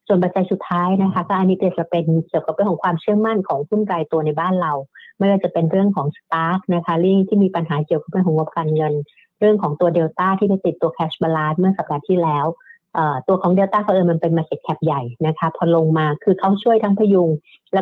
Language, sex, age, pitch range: Thai, female, 60-79, 160-195 Hz